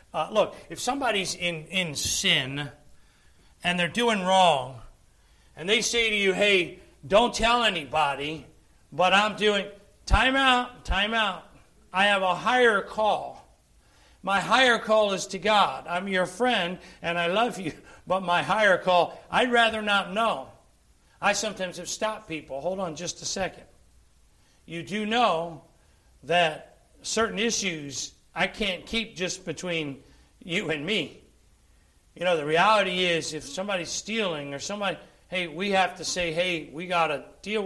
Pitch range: 155-205 Hz